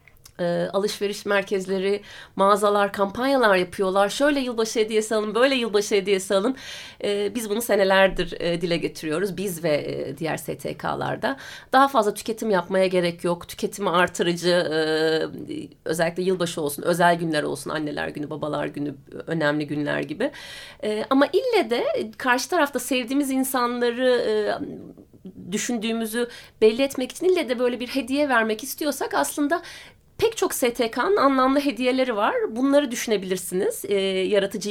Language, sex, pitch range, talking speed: Turkish, female, 195-275 Hz, 125 wpm